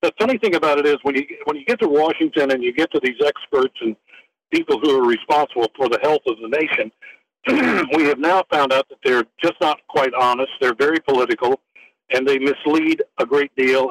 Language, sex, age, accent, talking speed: English, male, 60-79, American, 210 wpm